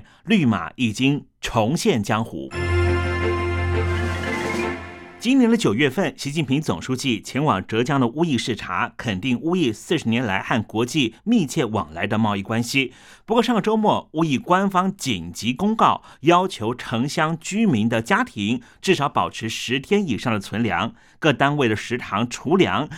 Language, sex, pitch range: Chinese, male, 110-165 Hz